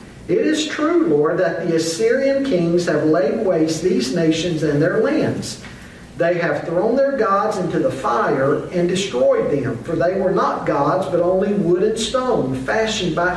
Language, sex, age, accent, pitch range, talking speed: English, male, 50-69, American, 155-220 Hz, 175 wpm